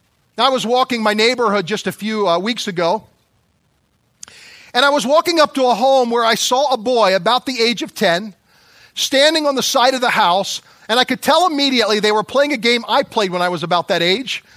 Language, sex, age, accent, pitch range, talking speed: English, male, 40-59, American, 220-285 Hz, 225 wpm